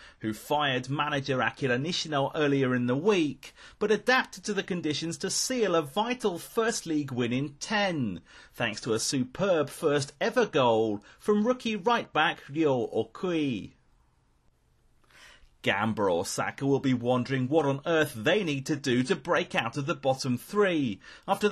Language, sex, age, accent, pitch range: Japanese, male, 30-49, British, 125-180 Hz